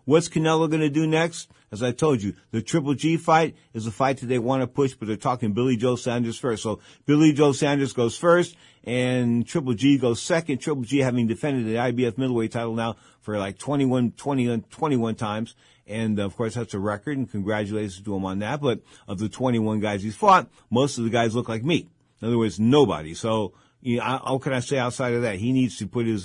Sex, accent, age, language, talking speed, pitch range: male, American, 50-69, English, 230 wpm, 110-135 Hz